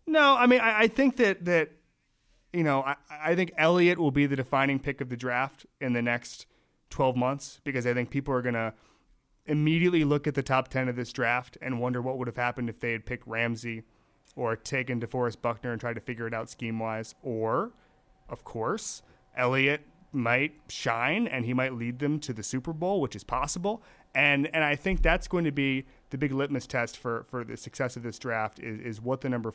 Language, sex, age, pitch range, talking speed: English, male, 30-49, 115-140 Hz, 215 wpm